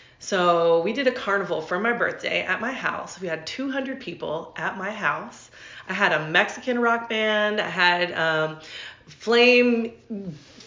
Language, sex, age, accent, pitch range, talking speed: English, female, 30-49, American, 185-245 Hz, 155 wpm